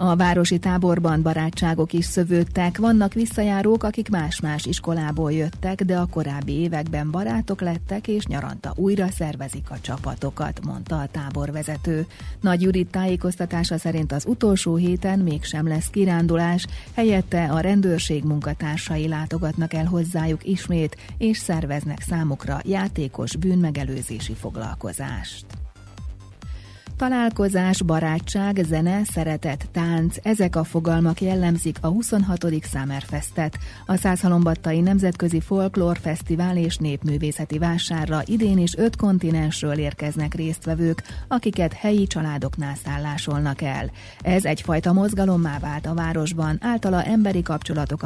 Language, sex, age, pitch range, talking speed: Hungarian, female, 30-49, 150-180 Hz, 115 wpm